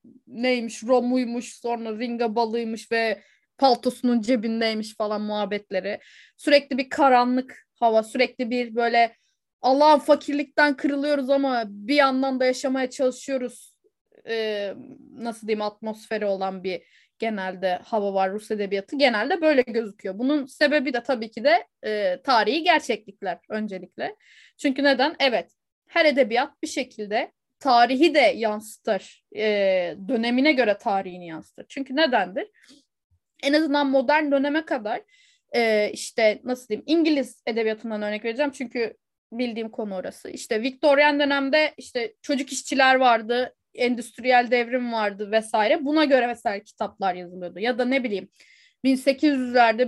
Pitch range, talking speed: 220-280 Hz, 125 wpm